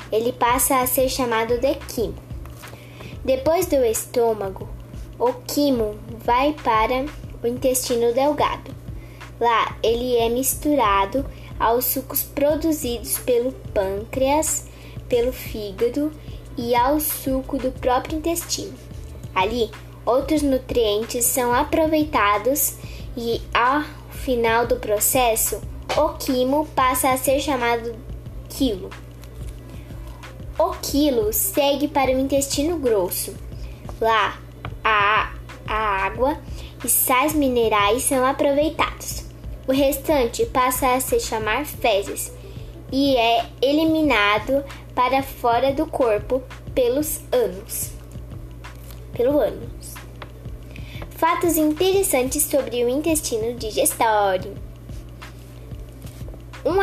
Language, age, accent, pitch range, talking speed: Portuguese, 10-29, Brazilian, 235-295 Hz, 95 wpm